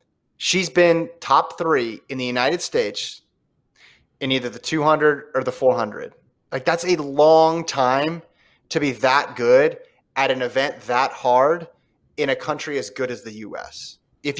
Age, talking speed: 30-49, 160 wpm